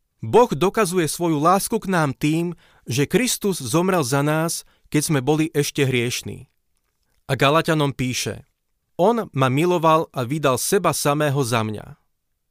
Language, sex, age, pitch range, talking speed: Slovak, male, 40-59, 130-175 Hz, 140 wpm